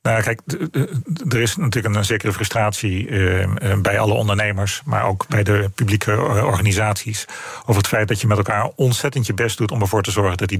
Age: 40-59